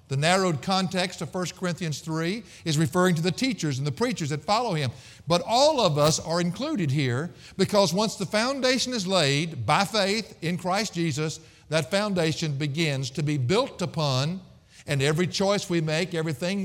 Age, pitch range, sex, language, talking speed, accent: 50-69, 140-185 Hz, male, English, 175 wpm, American